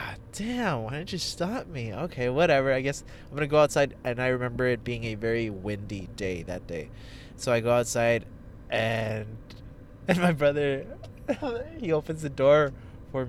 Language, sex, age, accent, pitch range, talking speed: English, male, 20-39, American, 105-125 Hz, 170 wpm